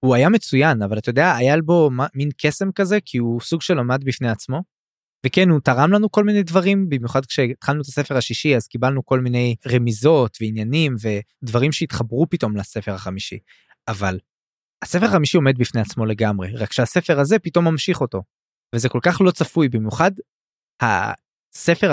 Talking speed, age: 170 wpm, 20-39